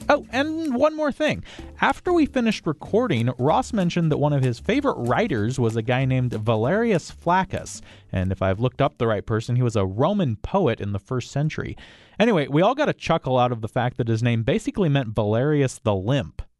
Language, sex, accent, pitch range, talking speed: English, male, American, 110-165 Hz, 210 wpm